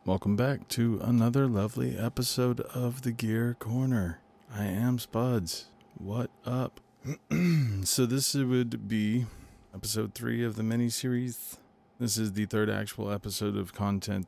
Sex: male